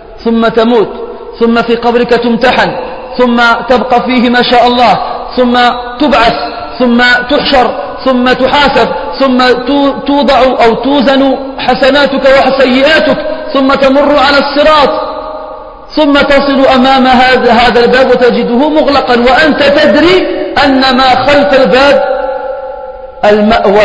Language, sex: French, male